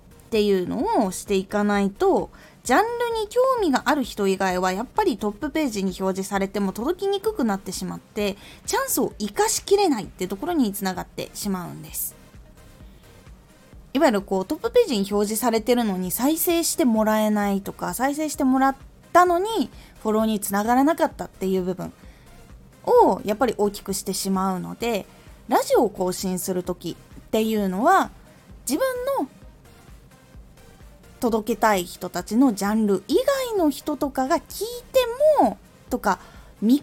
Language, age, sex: Japanese, 20-39, female